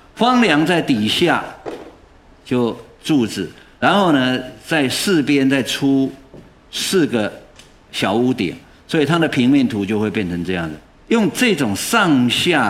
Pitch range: 105-165 Hz